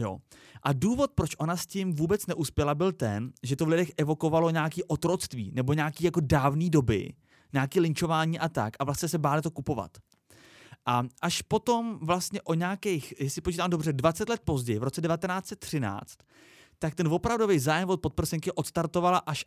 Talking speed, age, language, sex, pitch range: 175 wpm, 30-49, Czech, male, 125-170 Hz